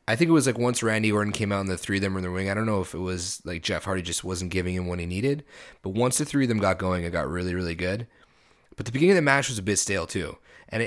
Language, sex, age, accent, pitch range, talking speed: English, male, 20-39, American, 95-120 Hz, 330 wpm